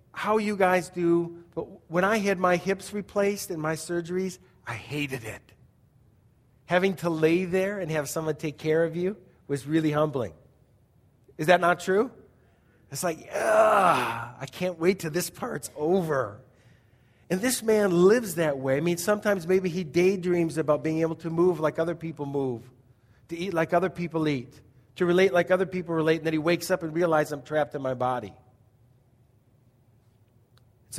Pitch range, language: 130-185 Hz, English